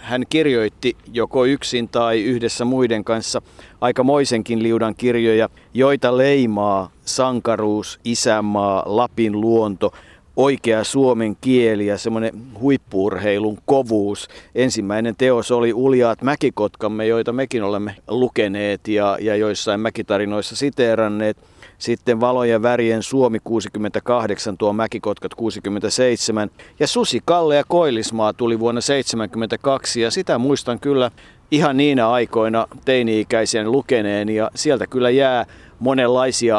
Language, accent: Finnish, native